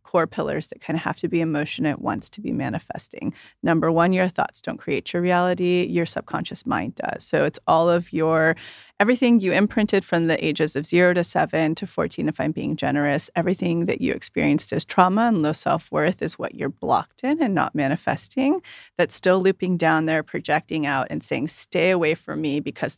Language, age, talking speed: English, 30-49, 205 wpm